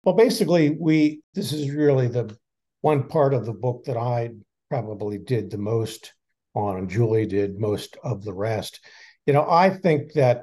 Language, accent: English, American